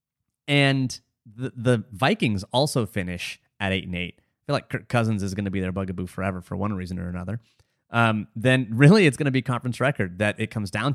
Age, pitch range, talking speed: 30-49, 105-130 Hz, 225 wpm